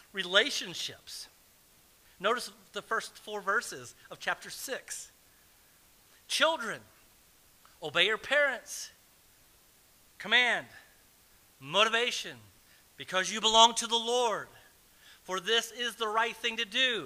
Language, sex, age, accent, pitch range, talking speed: English, male, 40-59, American, 195-240 Hz, 100 wpm